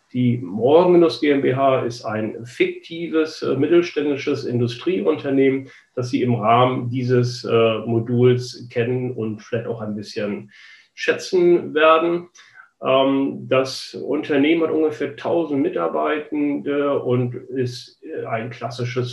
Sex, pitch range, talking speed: male, 120-155 Hz, 100 wpm